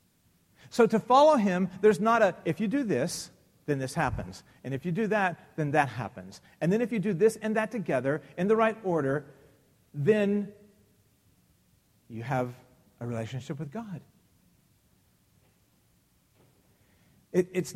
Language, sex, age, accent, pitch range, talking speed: English, male, 40-59, American, 135-205 Hz, 145 wpm